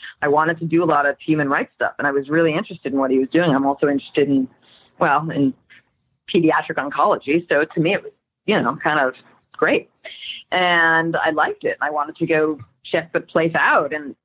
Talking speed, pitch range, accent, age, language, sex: 215 wpm, 145-190 Hz, American, 30-49, English, female